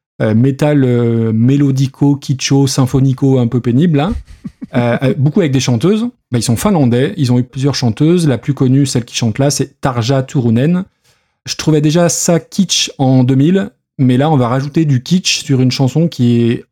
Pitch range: 125-155 Hz